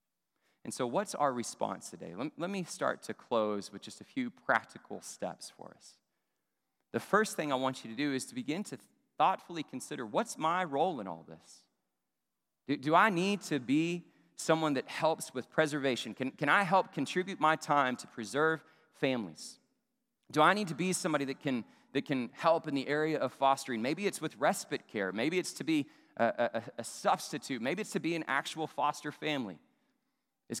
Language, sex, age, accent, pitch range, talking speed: English, male, 30-49, American, 120-175 Hz, 190 wpm